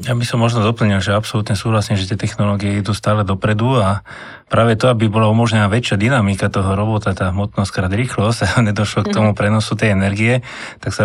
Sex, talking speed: male, 200 wpm